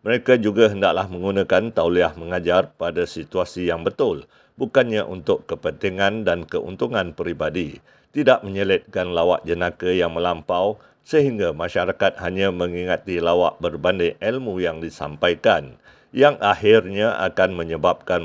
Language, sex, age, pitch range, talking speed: Malay, male, 50-69, 90-110 Hz, 115 wpm